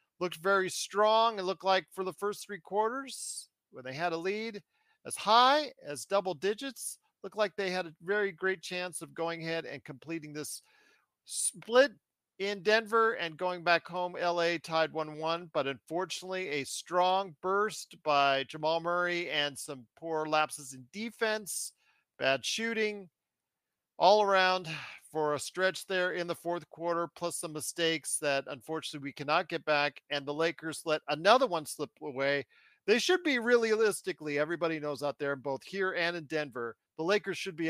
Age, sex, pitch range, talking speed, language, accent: 40-59, male, 150-200 Hz, 170 wpm, English, American